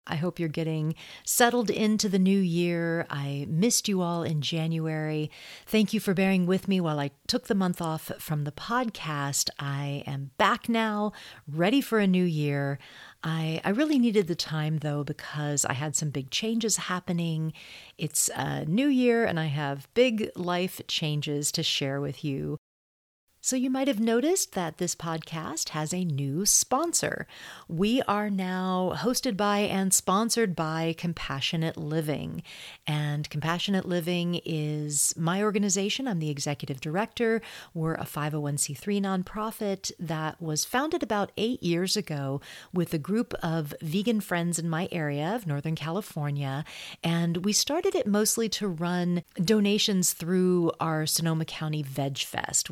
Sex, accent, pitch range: female, American, 150-205 Hz